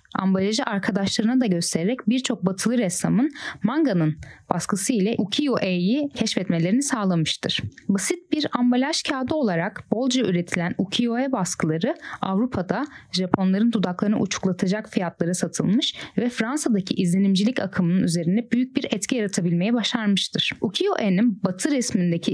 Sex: female